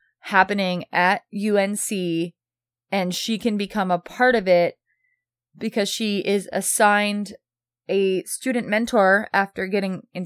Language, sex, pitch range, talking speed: English, female, 175-220 Hz, 135 wpm